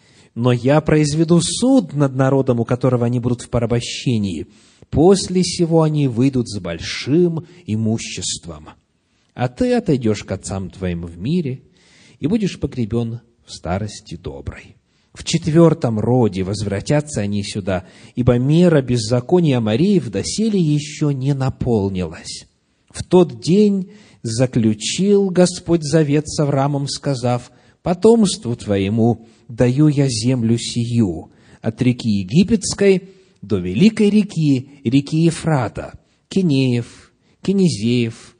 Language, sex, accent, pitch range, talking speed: Russian, male, native, 110-160 Hz, 115 wpm